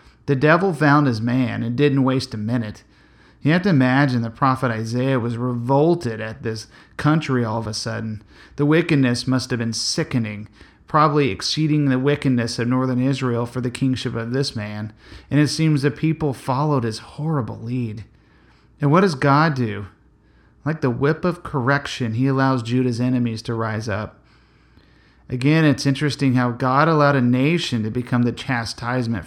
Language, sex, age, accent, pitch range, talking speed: English, male, 40-59, American, 110-140 Hz, 170 wpm